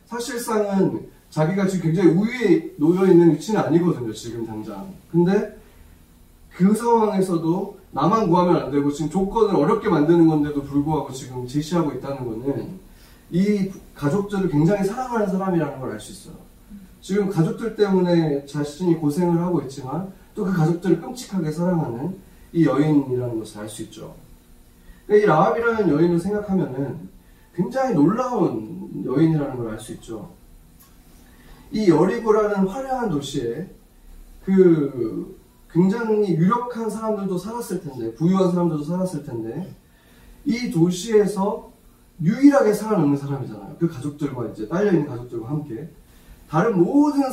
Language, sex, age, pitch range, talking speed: English, male, 30-49, 145-195 Hz, 110 wpm